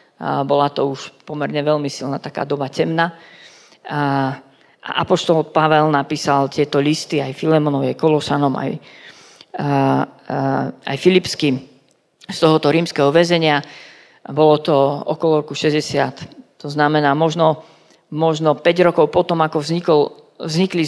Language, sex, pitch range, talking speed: Slovak, female, 145-170 Hz, 115 wpm